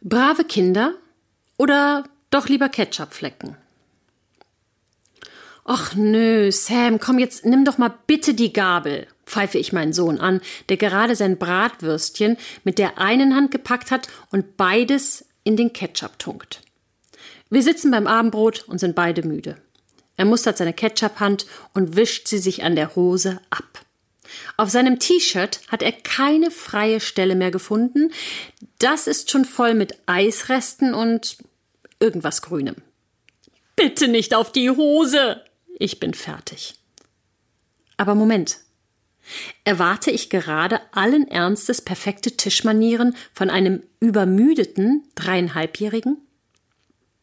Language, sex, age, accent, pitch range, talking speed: German, female, 40-59, German, 190-255 Hz, 125 wpm